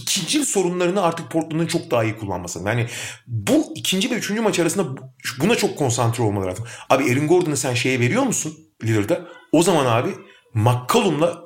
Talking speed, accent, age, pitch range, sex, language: 170 wpm, native, 40-59, 120-185 Hz, male, Turkish